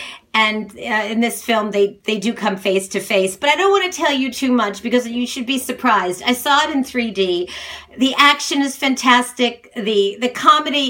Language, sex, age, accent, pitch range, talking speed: English, female, 40-59, American, 215-285 Hz, 210 wpm